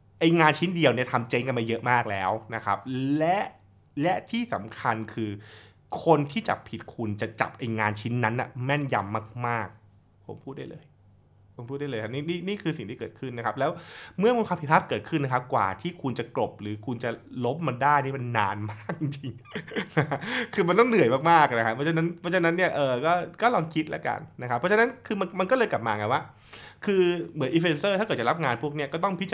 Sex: male